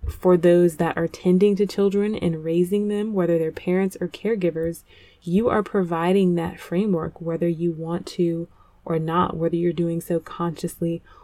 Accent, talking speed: American, 165 wpm